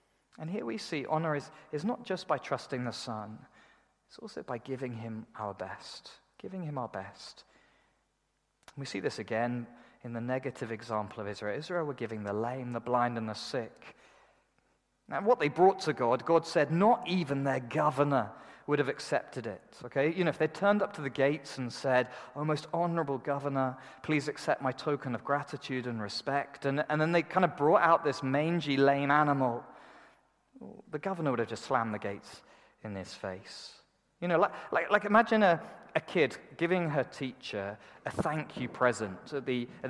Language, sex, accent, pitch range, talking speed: English, male, British, 120-155 Hz, 190 wpm